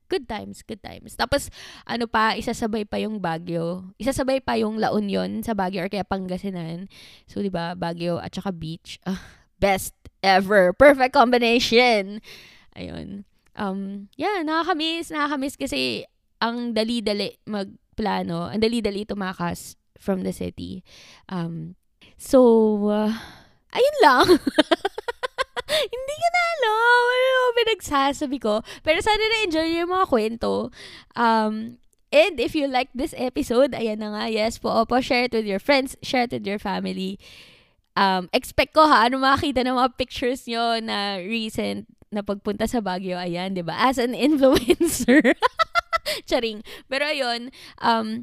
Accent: native